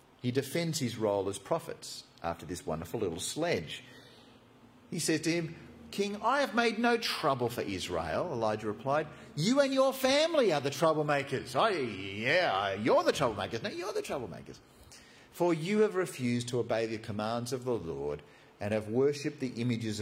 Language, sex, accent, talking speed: English, male, Australian, 170 wpm